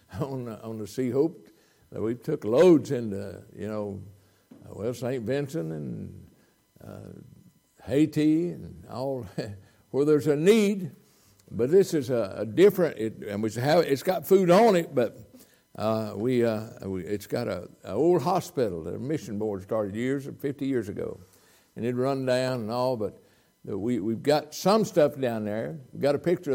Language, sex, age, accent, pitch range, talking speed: English, male, 60-79, American, 110-160 Hz, 185 wpm